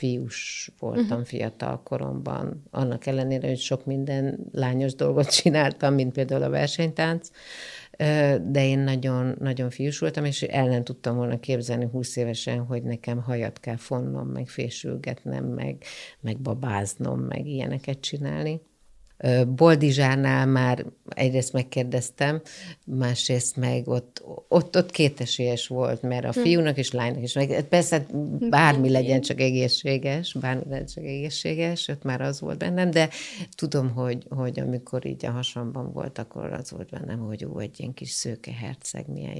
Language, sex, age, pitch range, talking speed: Hungarian, female, 50-69, 125-150 Hz, 140 wpm